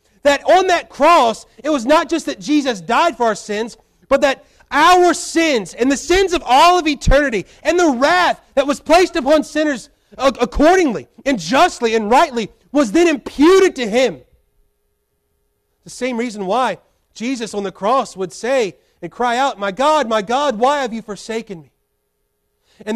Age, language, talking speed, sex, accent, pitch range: 30-49, English, 170 wpm, male, American, 230-305 Hz